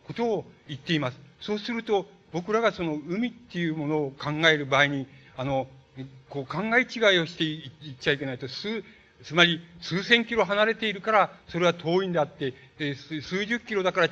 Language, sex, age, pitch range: Japanese, male, 60-79, 150-195 Hz